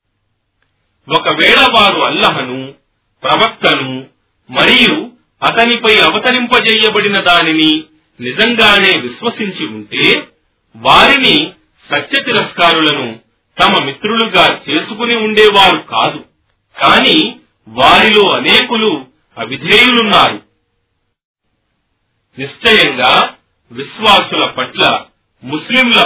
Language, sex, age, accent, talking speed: Telugu, male, 40-59, native, 60 wpm